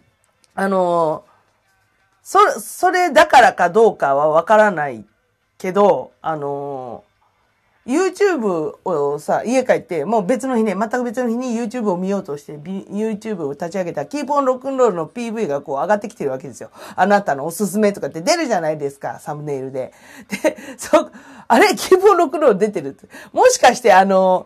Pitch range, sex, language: 170-280 Hz, female, Japanese